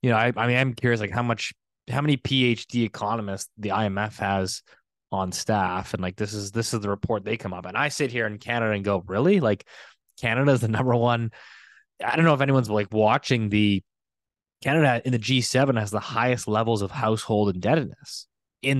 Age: 20-39